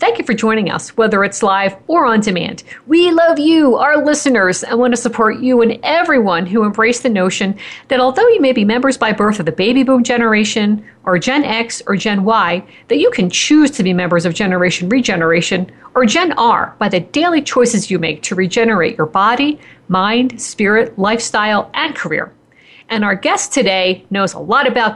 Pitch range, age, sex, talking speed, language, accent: 190-255 Hz, 50-69, female, 195 wpm, English, American